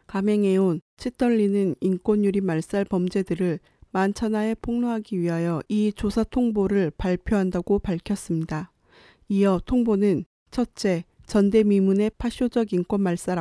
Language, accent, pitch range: Korean, native, 180-210 Hz